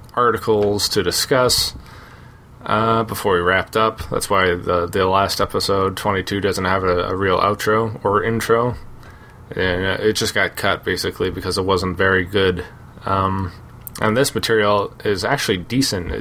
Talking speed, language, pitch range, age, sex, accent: 150 wpm, English, 95-115 Hz, 20-39, male, American